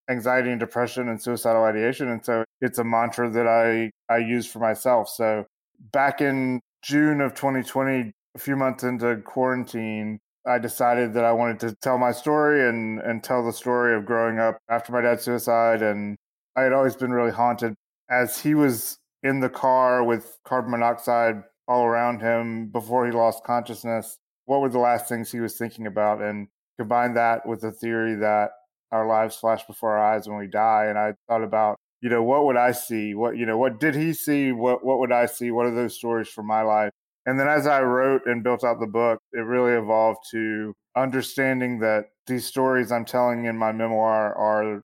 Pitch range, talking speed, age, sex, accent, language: 110-125 Hz, 200 wpm, 20-39, male, American, English